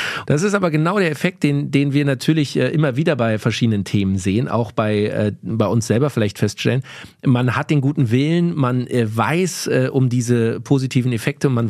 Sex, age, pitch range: male, 40-59, 115-145 Hz